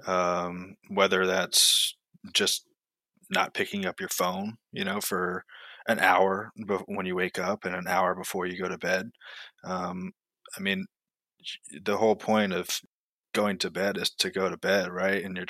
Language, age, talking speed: English, 20-39, 175 wpm